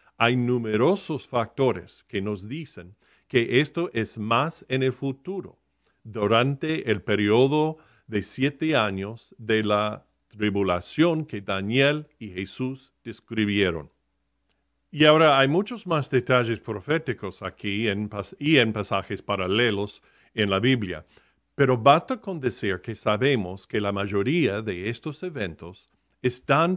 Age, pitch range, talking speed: 40-59, 105-140 Hz, 125 wpm